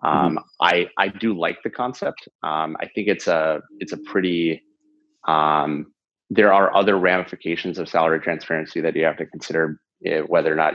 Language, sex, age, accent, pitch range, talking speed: English, male, 30-49, American, 80-90 Hz, 180 wpm